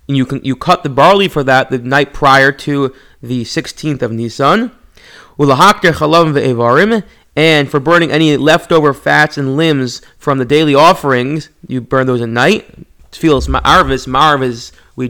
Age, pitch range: 30-49, 130-160 Hz